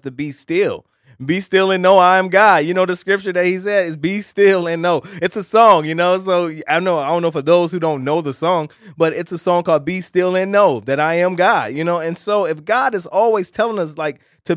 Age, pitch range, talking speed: 20-39, 155-195 Hz, 270 wpm